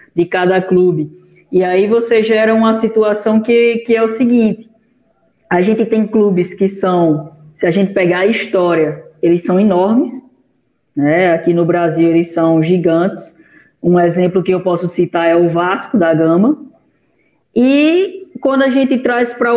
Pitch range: 175-225 Hz